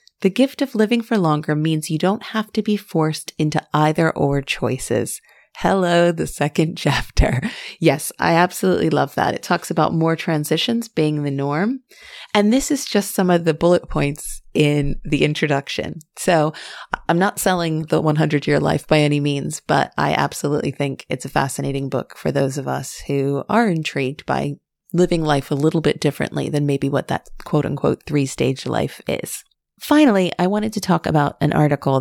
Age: 30-49